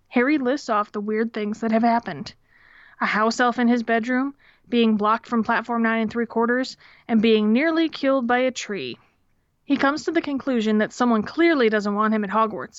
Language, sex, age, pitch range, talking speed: English, female, 20-39, 215-250 Hz, 200 wpm